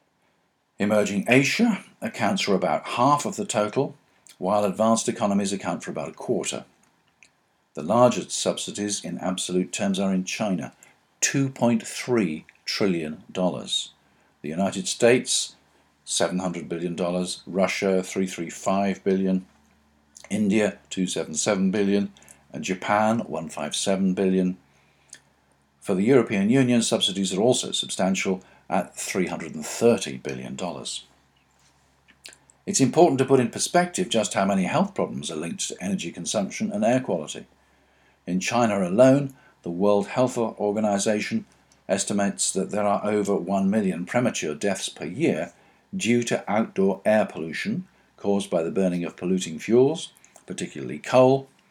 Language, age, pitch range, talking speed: English, 50-69, 90-120 Hz, 125 wpm